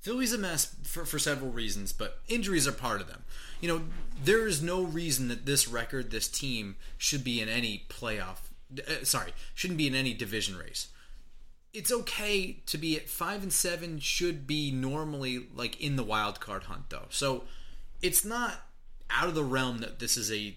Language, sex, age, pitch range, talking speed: English, male, 30-49, 100-150 Hz, 195 wpm